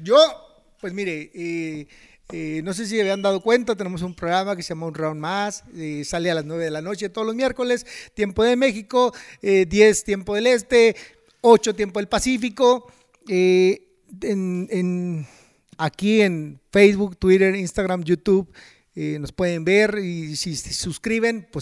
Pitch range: 165-220 Hz